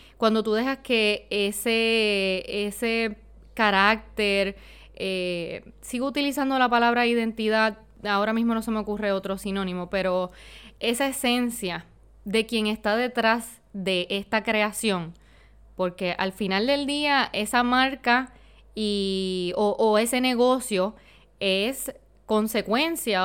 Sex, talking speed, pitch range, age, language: female, 115 wpm, 200-250 Hz, 20-39, Spanish